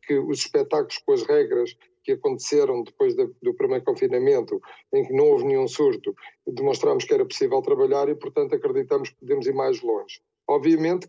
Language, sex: Portuguese, male